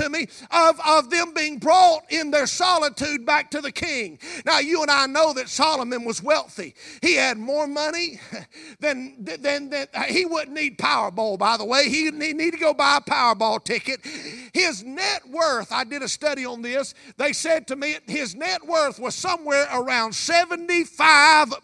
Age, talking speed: 50-69, 185 wpm